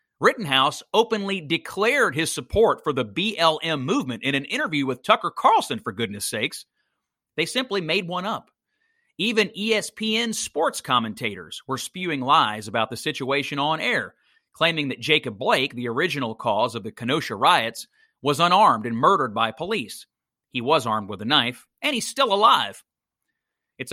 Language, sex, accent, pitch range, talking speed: English, male, American, 125-190 Hz, 160 wpm